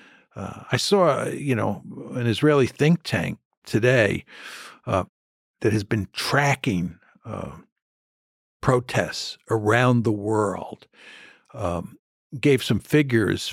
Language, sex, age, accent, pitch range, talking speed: English, male, 60-79, American, 100-125 Hz, 110 wpm